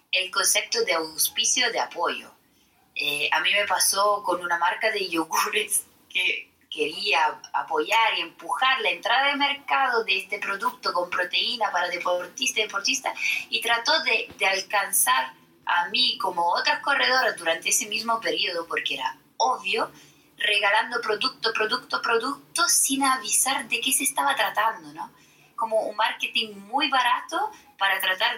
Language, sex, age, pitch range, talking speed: Spanish, female, 20-39, 175-275 Hz, 145 wpm